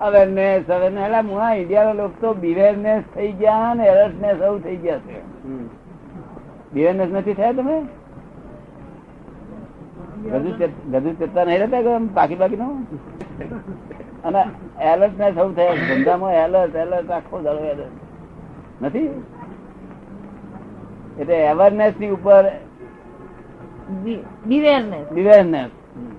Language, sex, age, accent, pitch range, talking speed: Gujarati, male, 60-79, native, 175-215 Hz, 100 wpm